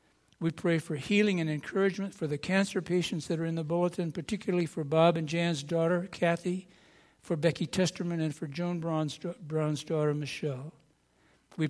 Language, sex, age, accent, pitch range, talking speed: English, male, 60-79, American, 150-175 Hz, 165 wpm